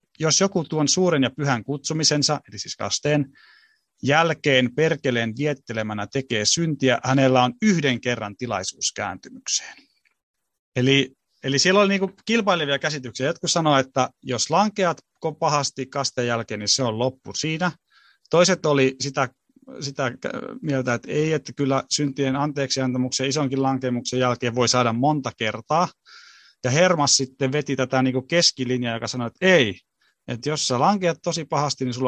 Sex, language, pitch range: male, Finnish, 125-150 Hz